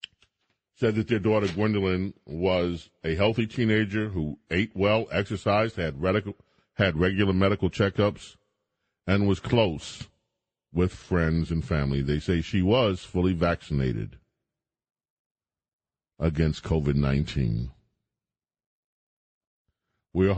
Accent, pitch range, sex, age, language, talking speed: American, 70-95 Hz, male, 40-59, English, 105 wpm